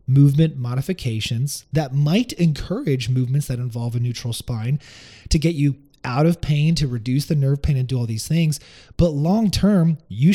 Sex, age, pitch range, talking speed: male, 30-49, 120-150 Hz, 175 wpm